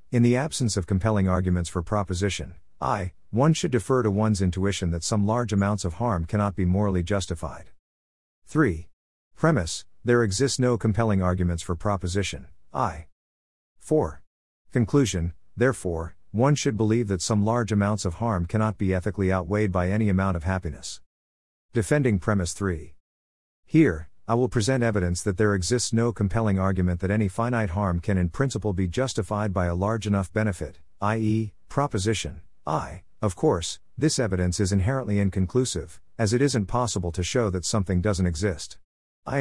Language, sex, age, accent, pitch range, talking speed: English, male, 50-69, American, 90-115 Hz, 160 wpm